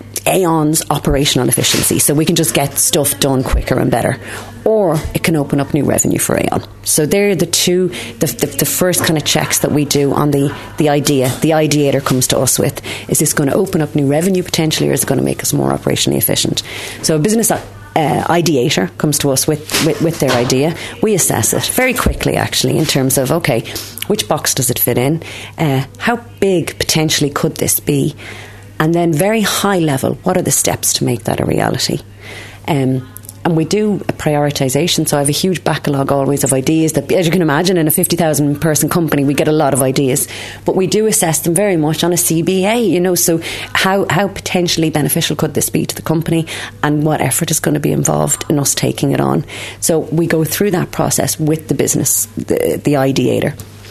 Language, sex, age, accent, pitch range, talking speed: English, female, 30-49, Irish, 130-165 Hz, 215 wpm